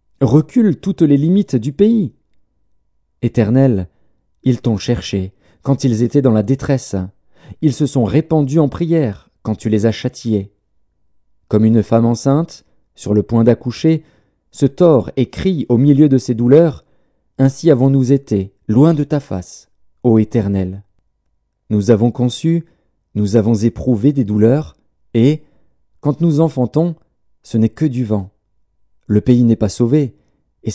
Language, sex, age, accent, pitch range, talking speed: French, male, 40-59, French, 105-155 Hz, 150 wpm